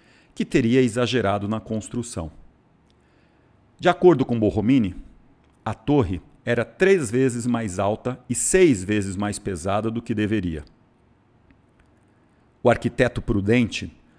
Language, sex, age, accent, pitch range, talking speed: Portuguese, male, 50-69, Brazilian, 100-135 Hz, 115 wpm